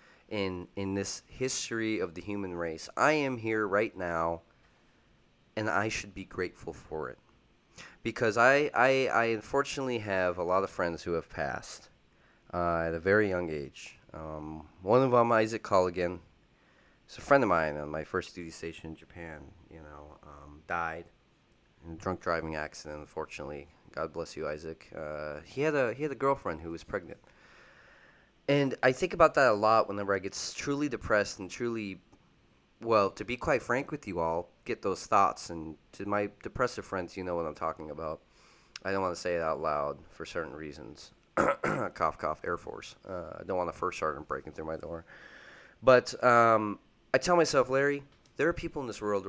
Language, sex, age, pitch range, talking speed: English, male, 30-49, 80-115 Hz, 190 wpm